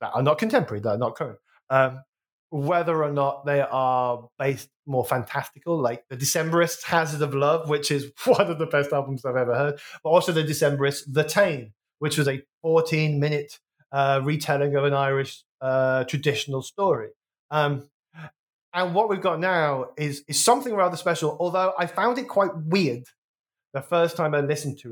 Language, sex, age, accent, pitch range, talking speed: English, male, 20-39, British, 135-170 Hz, 180 wpm